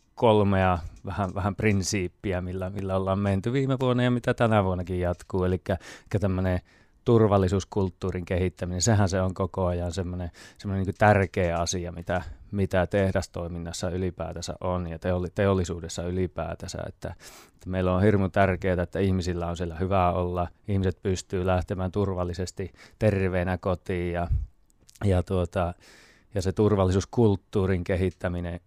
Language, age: Finnish, 30-49